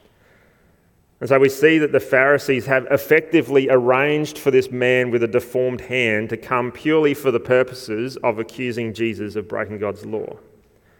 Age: 30-49